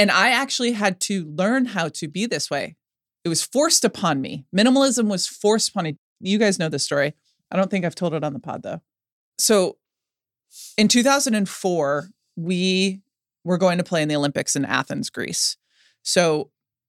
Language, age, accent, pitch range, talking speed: English, 20-39, American, 150-195 Hz, 180 wpm